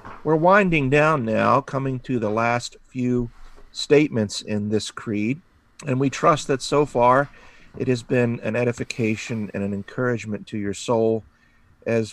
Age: 50-69